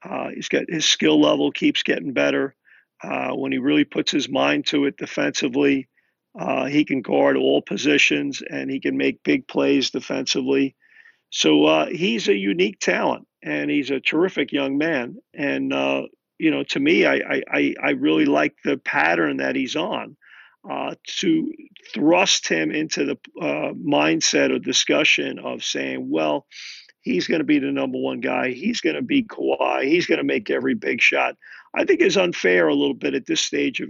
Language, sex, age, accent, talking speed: English, male, 50-69, American, 185 wpm